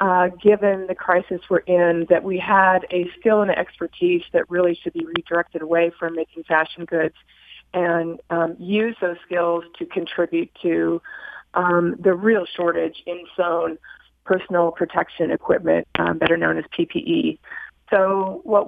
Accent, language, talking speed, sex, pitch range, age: American, English, 155 wpm, female, 175-210 Hz, 40-59